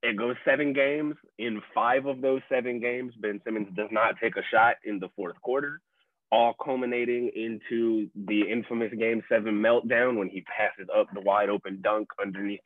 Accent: American